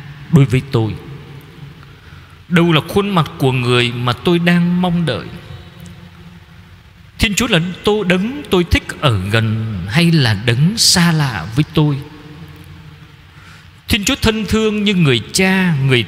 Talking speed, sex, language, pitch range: 140 wpm, male, Vietnamese, 105-155 Hz